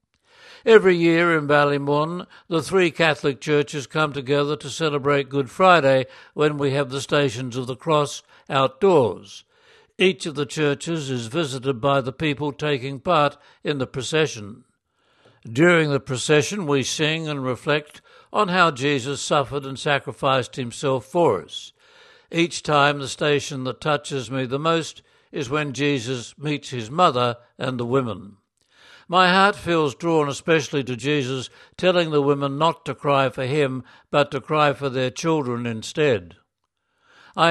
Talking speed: 150 wpm